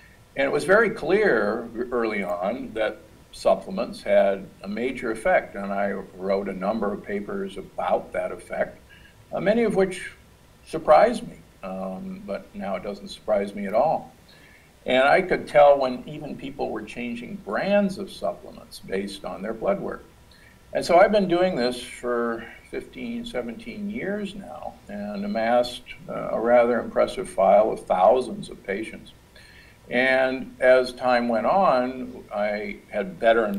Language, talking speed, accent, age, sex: English, 150 wpm, American, 60-79, male